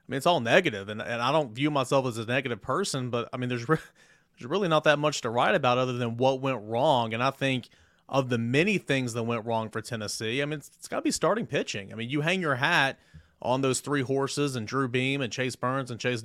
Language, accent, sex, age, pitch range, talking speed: English, American, male, 30-49, 120-145 Hz, 265 wpm